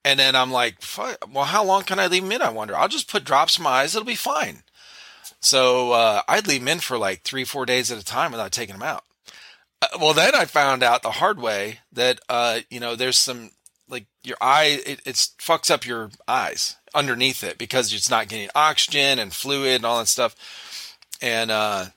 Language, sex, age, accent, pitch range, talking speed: English, male, 40-59, American, 115-155 Hz, 220 wpm